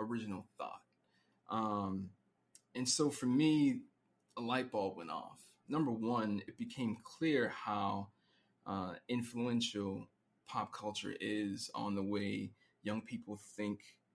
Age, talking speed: 20-39, 125 wpm